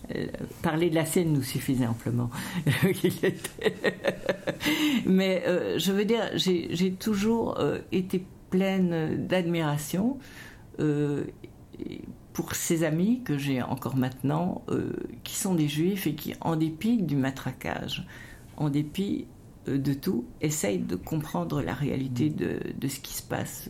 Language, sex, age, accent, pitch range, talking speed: French, female, 50-69, French, 130-170 Hz, 130 wpm